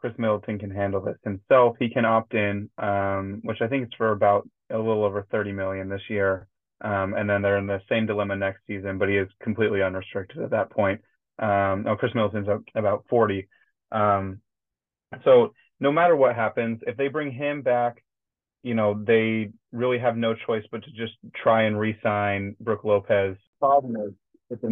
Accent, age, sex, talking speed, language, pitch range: American, 30-49, male, 190 wpm, English, 100-115 Hz